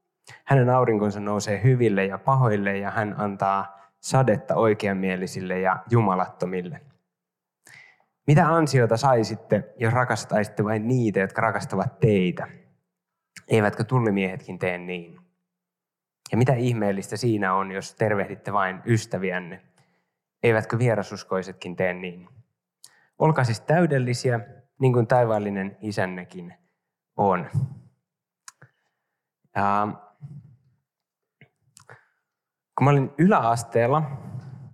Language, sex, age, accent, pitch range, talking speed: Finnish, male, 20-39, native, 100-135 Hz, 95 wpm